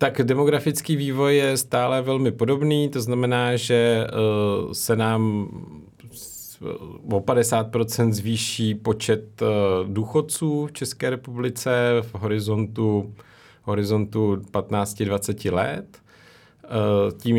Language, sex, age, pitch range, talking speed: Czech, male, 40-59, 95-115 Hz, 90 wpm